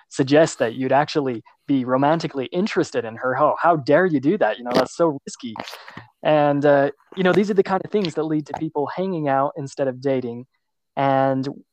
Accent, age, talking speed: American, 20-39, 200 wpm